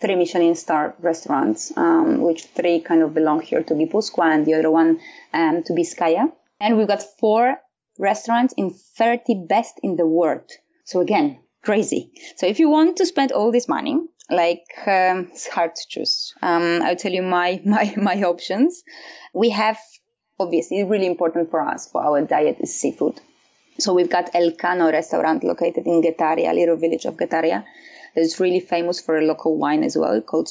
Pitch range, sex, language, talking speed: 165-220 Hz, female, English, 185 wpm